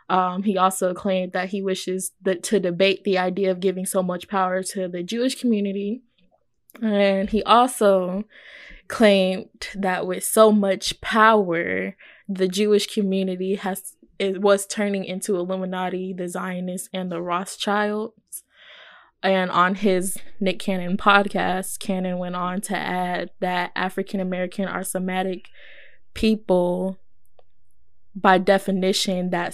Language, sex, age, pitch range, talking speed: English, female, 20-39, 180-200 Hz, 130 wpm